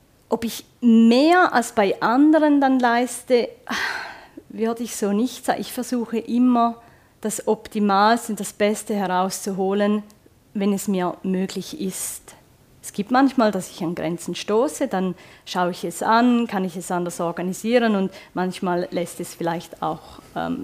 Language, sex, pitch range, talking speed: German, female, 185-235 Hz, 150 wpm